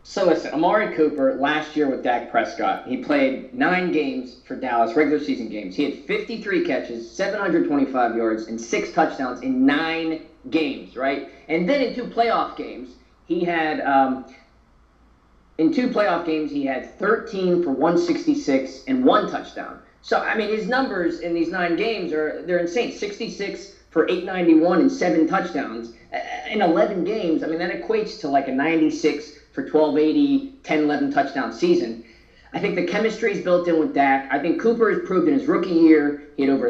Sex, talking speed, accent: male, 195 wpm, American